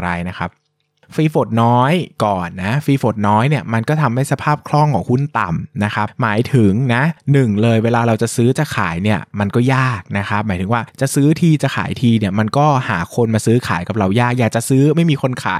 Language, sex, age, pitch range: Thai, male, 20-39, 110-145 Hz